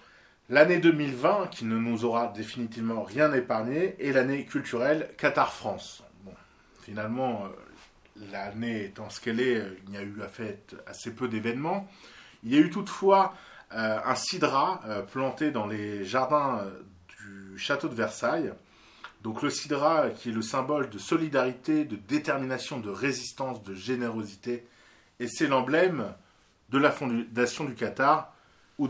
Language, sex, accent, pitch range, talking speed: French, male, French, 105-135 Hz, 140 wpm